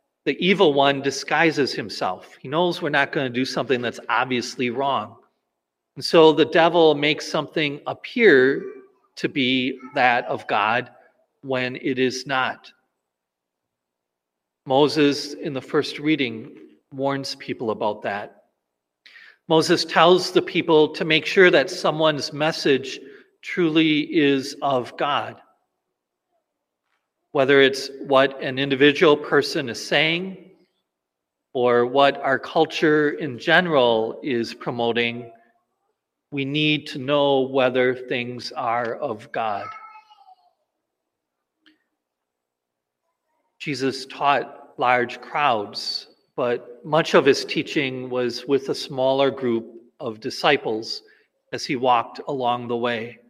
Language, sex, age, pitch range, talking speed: English, male, 40-59, 120-160 Hz, 115 wpm